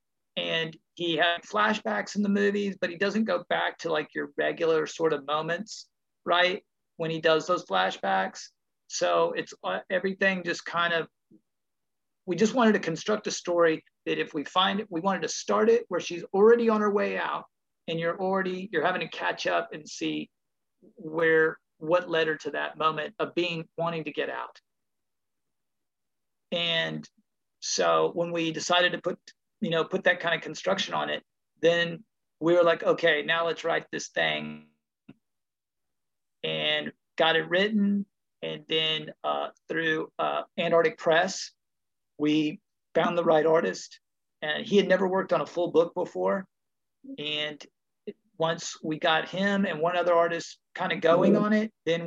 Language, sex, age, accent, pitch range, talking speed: English, male, 40-59, American, 155-190 Hz, 170 wpm